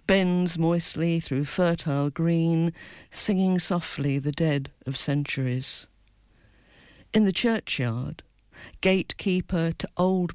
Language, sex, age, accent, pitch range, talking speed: English, female, 50-69, British, 140-180 Hz, 100 wpm